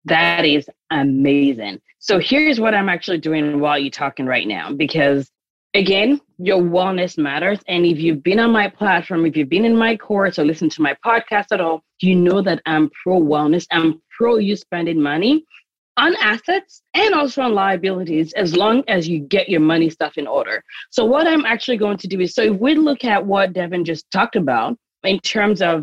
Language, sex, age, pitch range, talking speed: English, female, 30-49, 165-235 Hz, 200 wpm